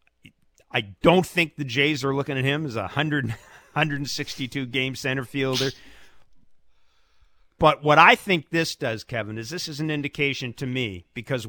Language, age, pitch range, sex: English, 50-69, 115-145 Hz, male